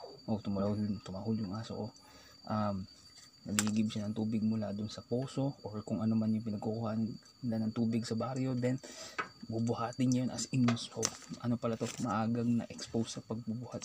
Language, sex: Filipino, male